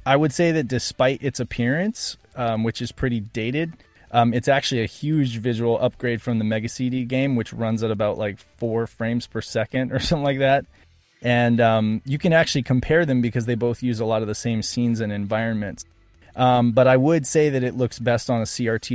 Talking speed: 215 wpm